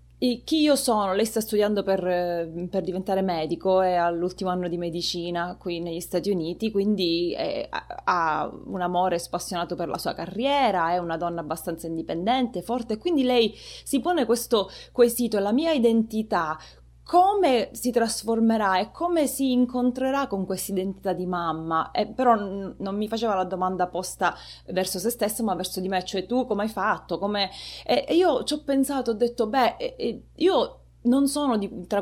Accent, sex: native, female